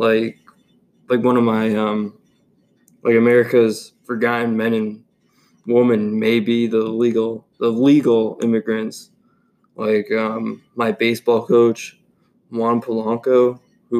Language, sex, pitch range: English, male, 110-120 Hz